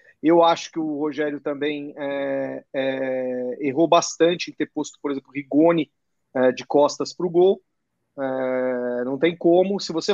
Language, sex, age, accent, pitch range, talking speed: Portuguese, male, 40-59, Brazilian, 155-210 Hz, 150 wpm